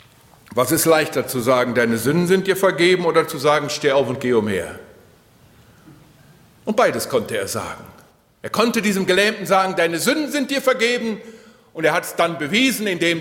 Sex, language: male, German